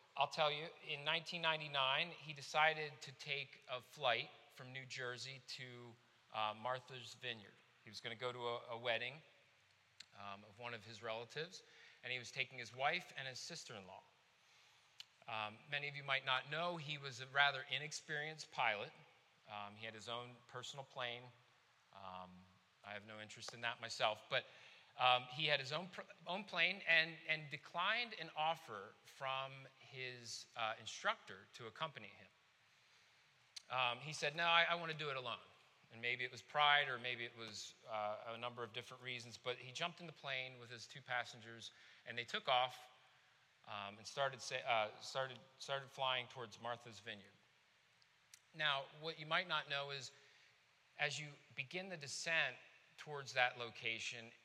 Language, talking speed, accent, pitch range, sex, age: English, 170 wpm, American, 120-145 Hz, male, 40-59